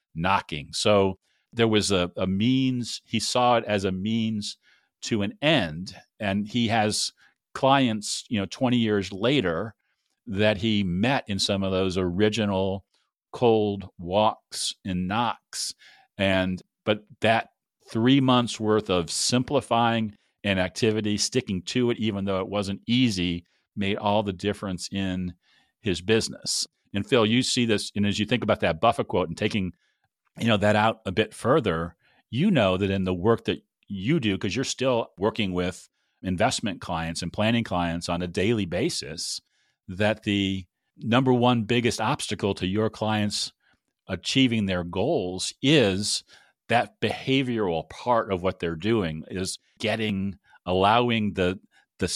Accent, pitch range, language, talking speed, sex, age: American, 95-115 Hz, English, 150 wpm, male, 40-59